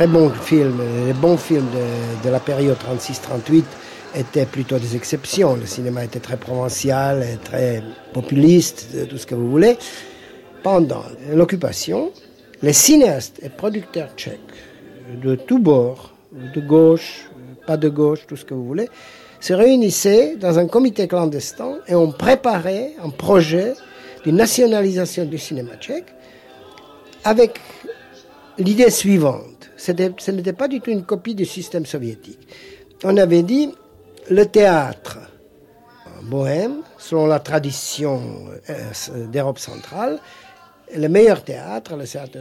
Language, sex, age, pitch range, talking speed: French, male, 50-69, 130-200 Hz, 135 wpm